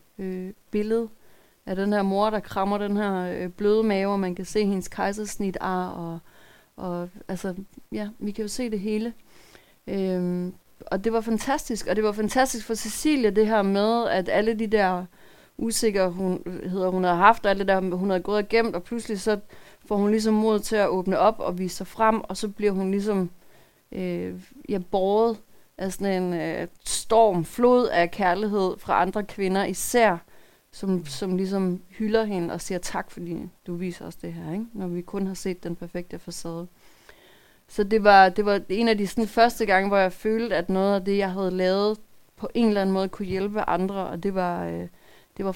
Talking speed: 200 wpm